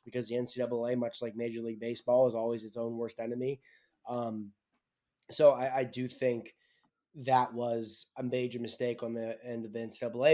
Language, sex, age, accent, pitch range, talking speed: English, male, 20-39, American, 115-130 Hz, 180 wpm